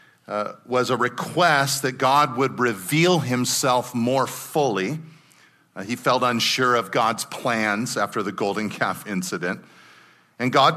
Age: 40-59